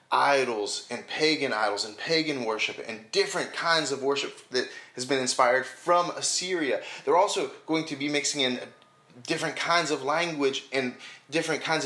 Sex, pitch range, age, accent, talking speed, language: male, 135-185 Hz, 30-49, American, 160 wpm, English